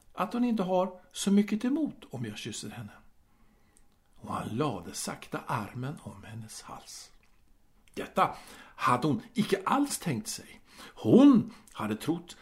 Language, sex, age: Swedish, male, 60-79